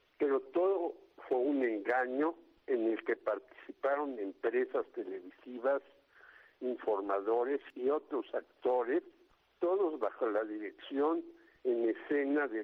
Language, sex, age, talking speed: Spanish, male, 60-79, 105 wpm